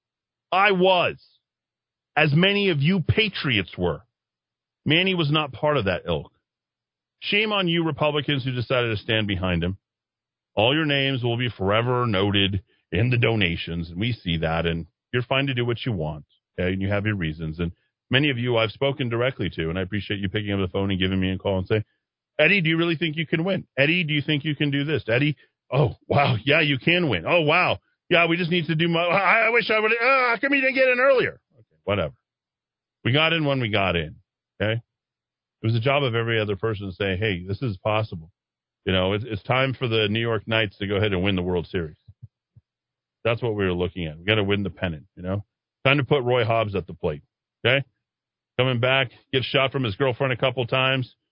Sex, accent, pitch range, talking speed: male, American, 100-150 Hz, 230 wpm